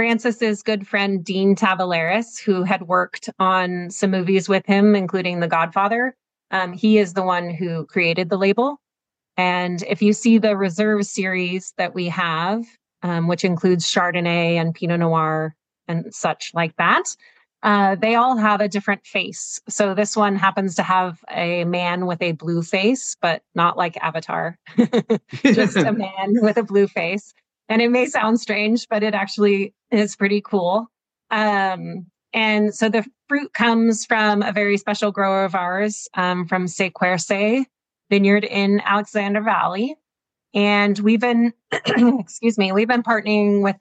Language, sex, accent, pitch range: English, female, American, 180-220 Hz